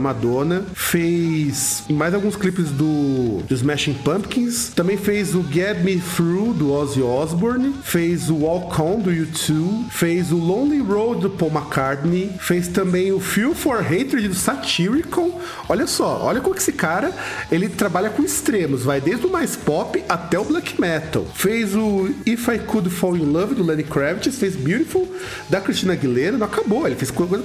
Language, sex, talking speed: Portuguese, male, 175 wpm